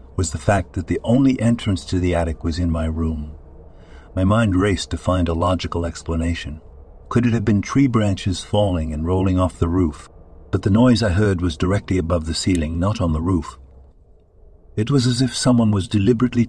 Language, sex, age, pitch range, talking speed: English, male, 60-79, 80-100 Hz, 200 wpm